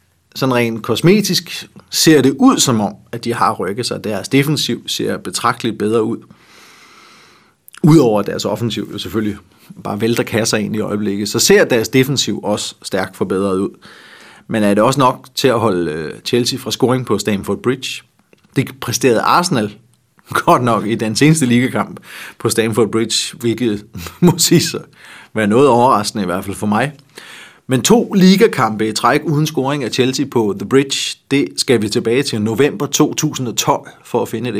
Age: 30-49